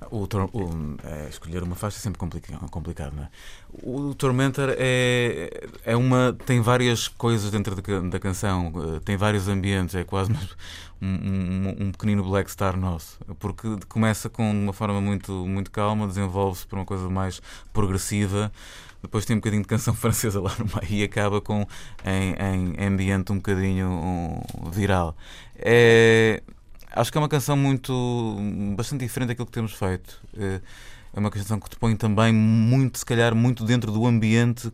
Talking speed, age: 150 wpm, 20-39